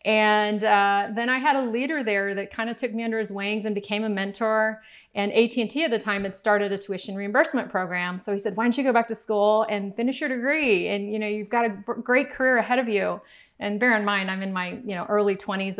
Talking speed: 255 wpm